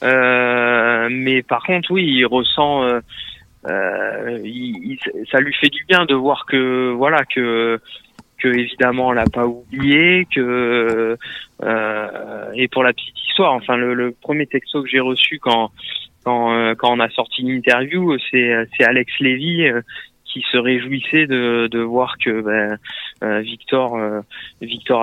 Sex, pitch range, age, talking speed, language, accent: male, 115-135 Hz, 20-39, 160 wpm, French, French